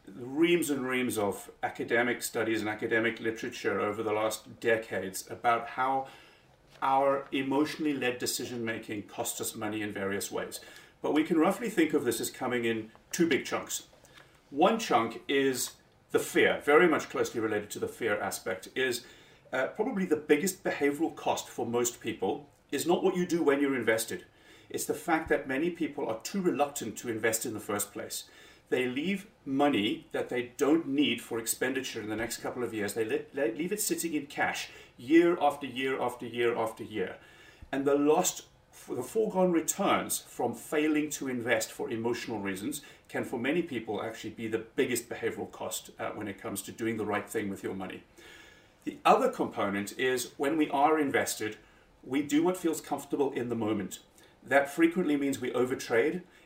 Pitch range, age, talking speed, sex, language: 115-155 Hz, 40-59, 180 wpm, male, English